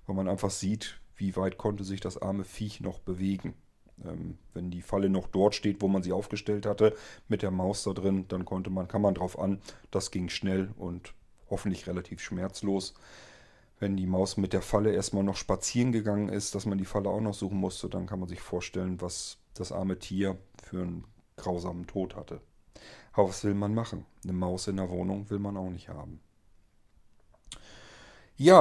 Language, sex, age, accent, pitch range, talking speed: German, male, 40-59, German, 95-120 Hz, 195 wpm